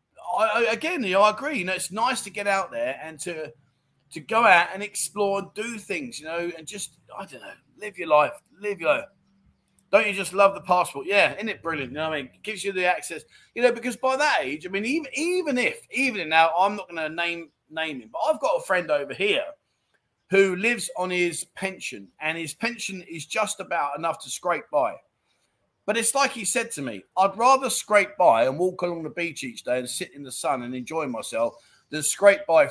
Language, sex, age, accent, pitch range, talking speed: English, male, 30-49, British, 155-215 Hz, 235 wpm